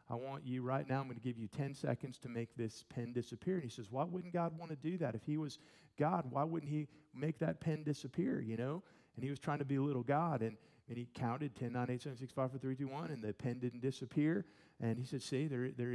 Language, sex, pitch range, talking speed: English, male, 120-155 Hz, 275 wpm